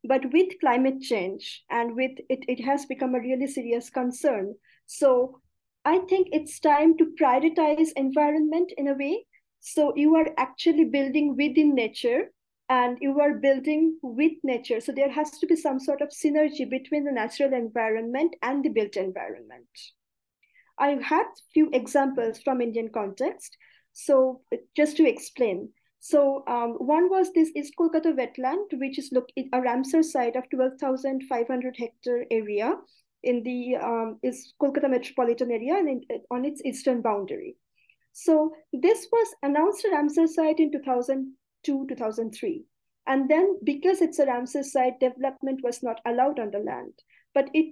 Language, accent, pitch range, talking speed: English, Indian, 255-315 Hz, 155 wpm